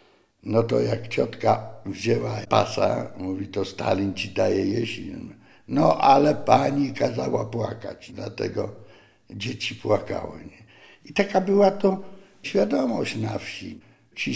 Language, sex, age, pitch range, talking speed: Polish, male, 60-79, 110-180 Hz, 120 wpm